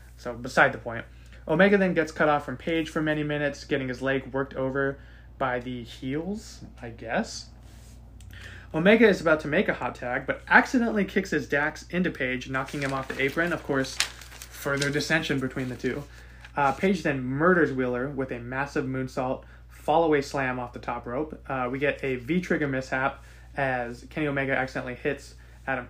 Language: English